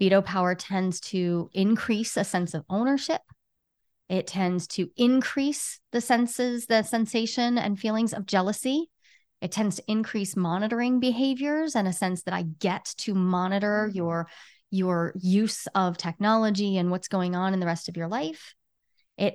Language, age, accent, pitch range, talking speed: English, 30-49, American, 180-230 Hz, 160 wpm